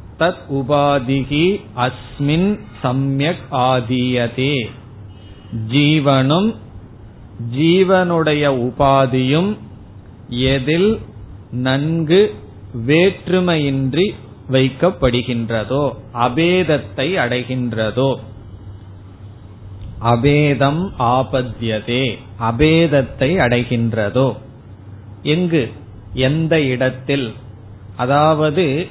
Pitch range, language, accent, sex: 115-155 Hz, Tamil, native, male